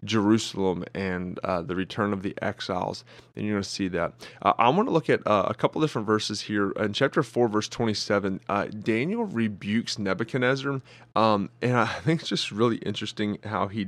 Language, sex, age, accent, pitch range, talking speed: English, male, 20-39, American, 100-120 Hz, 190 wpm